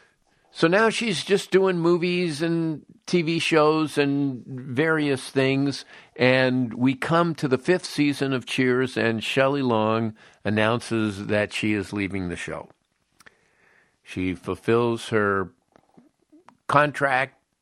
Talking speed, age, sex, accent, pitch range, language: 120 wpm, 50-69, male, American, 100-140 Hz, English